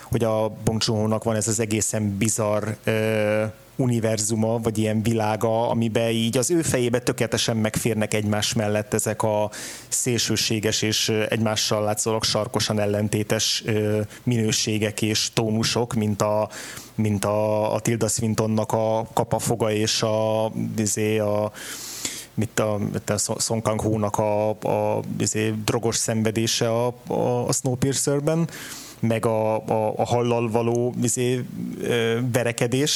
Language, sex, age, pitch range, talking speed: Hungarian, male, 20-39, 110-120 Hz, 120 wpm